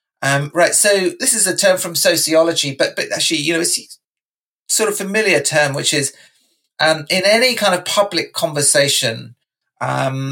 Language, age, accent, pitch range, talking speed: English, 40-59, British, 130-185 Hz, 170 wpm